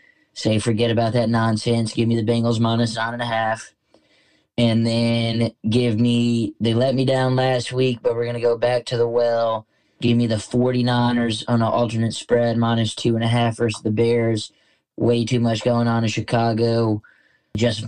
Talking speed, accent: 190 wpm, American